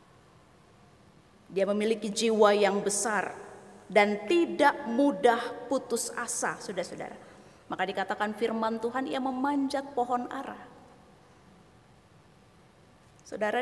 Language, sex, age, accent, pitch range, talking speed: Indonesian, female, 20-39, native, 215-285 Hz, 90 wpm